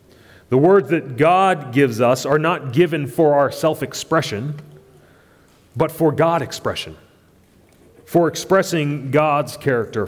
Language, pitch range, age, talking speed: English, 105-150 Hz, 30-49, 120 wpm